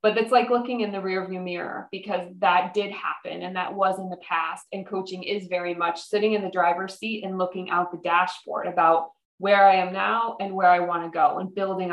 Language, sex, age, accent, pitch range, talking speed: English, female, 20-39, American, 180-210 Hz, 235 wpm